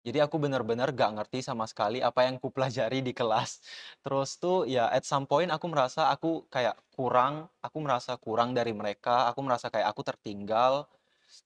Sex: male